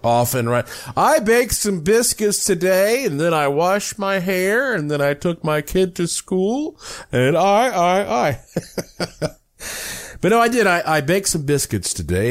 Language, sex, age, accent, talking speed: English, male, 50-69, American, 170 wpm